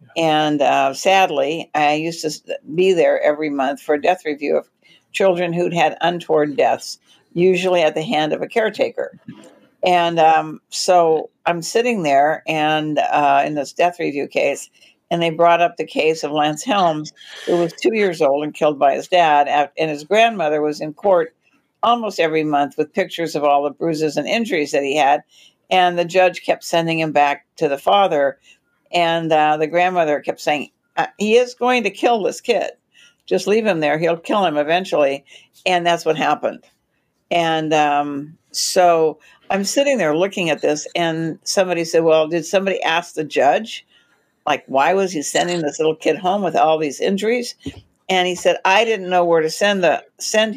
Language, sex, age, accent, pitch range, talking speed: English, female, 60-79, American, 150-185 Hz, 185 wpm